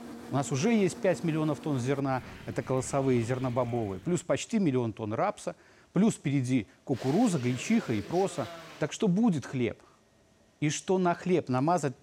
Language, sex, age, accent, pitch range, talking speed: Russian, male, 30-49, native, 130-190 Hz, 155 wpm